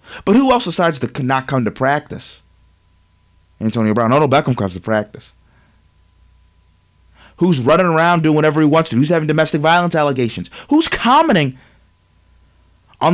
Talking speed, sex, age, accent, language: 145 wpm, male, 30-49, American, English